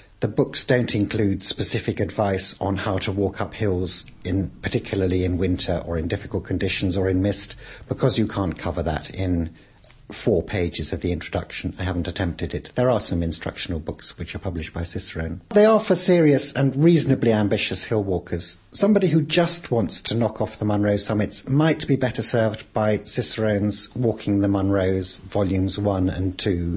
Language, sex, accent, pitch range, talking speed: English, male, British, 95-120 Hz, 180 wpm